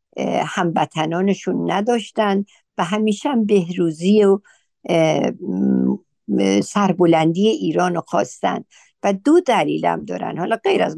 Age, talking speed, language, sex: 60-79, 95 wpm, Persian, female